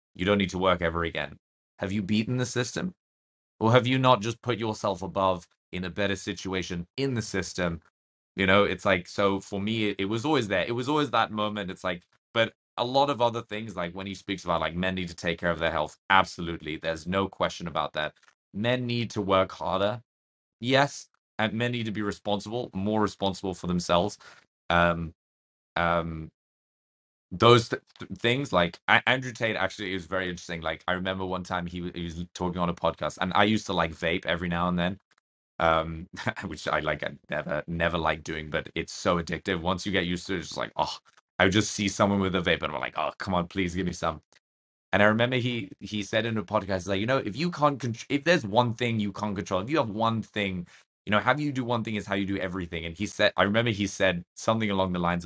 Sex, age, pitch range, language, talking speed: male, 20-39, 85-110 Hz, English, 235 wpm